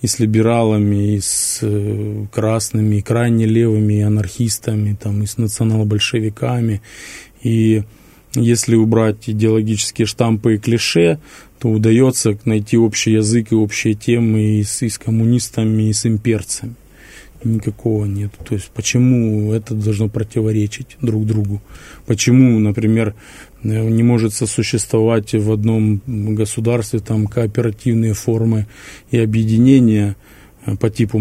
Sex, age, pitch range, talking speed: male, 20-39, 105-115 Hz, 115 wpm